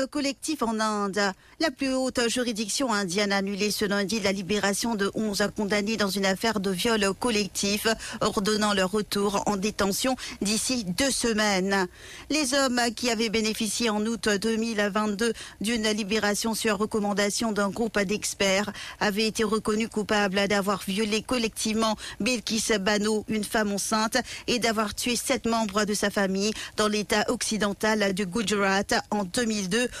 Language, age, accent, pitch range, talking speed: English, 50-69, French, 205-230 Hz, 145 wpm